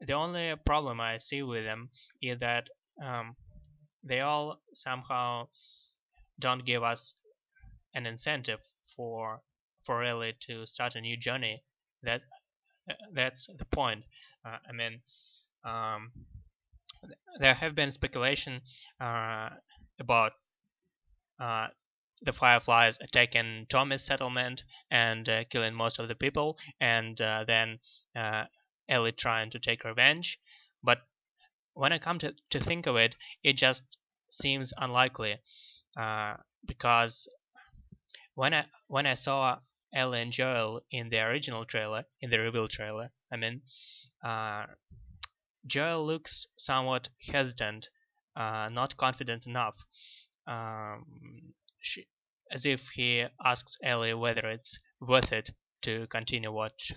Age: 20-39